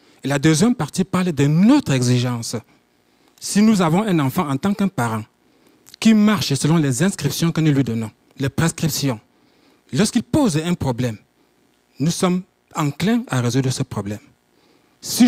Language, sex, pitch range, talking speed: French, male, 120-170 Hz, 155 wpm